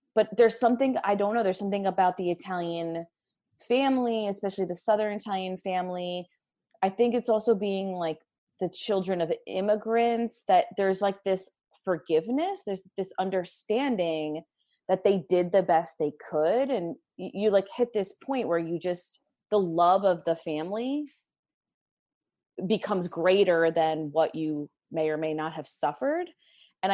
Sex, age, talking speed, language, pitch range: female, 20-39, 155 wpm, English, 165-215 Hz